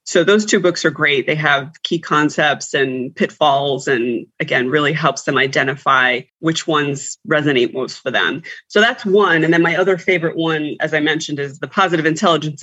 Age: 30-49